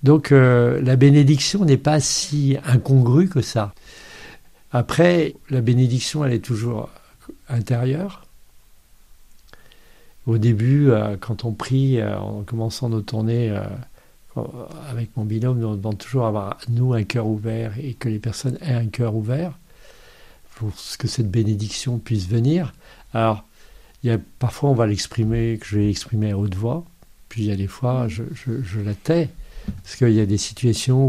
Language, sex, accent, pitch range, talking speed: French, male, French, 110-135 Hz, 170 wpm